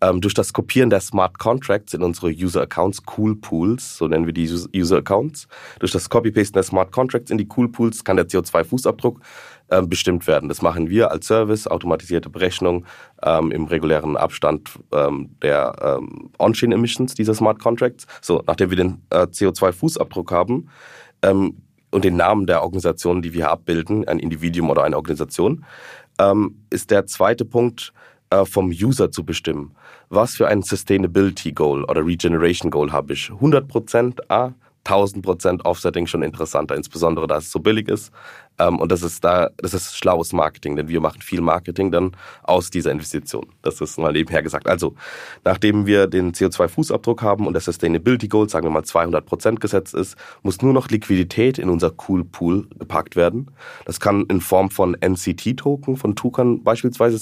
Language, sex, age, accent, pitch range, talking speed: German, male, 30-49, German, 85-115 Hz, 170 wpm